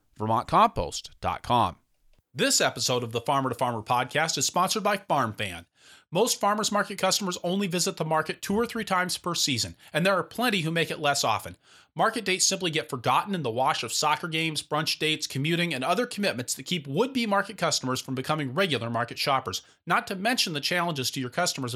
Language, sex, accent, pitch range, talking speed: English, male, American, 140-200 Hz, 195 wpm